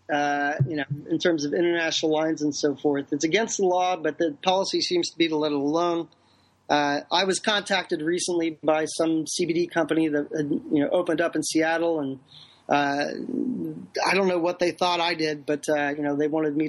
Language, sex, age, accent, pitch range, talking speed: English, male, 30-49, American, 150-180 Hz, 205 wpm